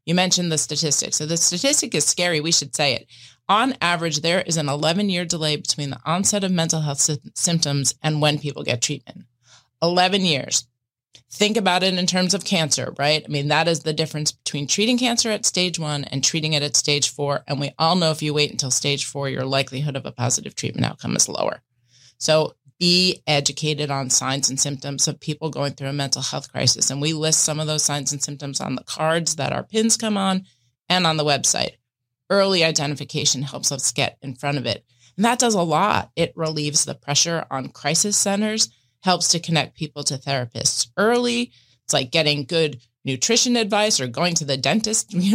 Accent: American